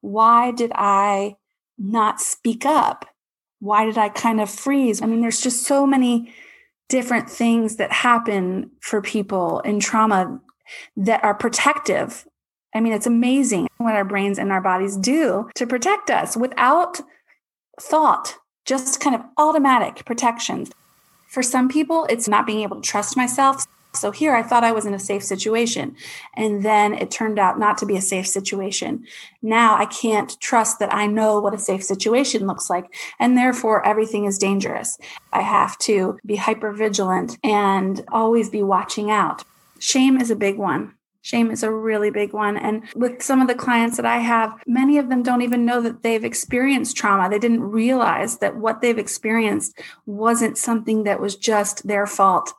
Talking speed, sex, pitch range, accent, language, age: 175 wpm, female, 205-245 Hz, American, English, 30-49